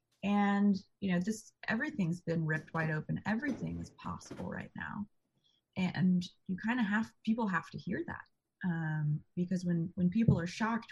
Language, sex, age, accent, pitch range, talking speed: English, female, 20-39, American, 170-205 Hz, 170 wpm